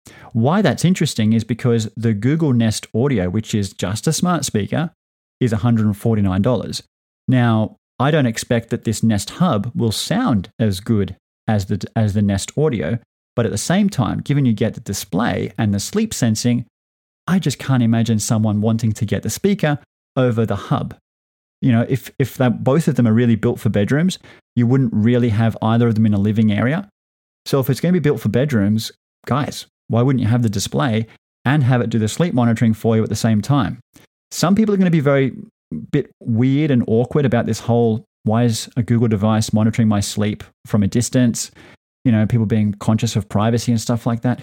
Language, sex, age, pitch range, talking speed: English, male, 30-49, 110-145 Hz, 205 wpm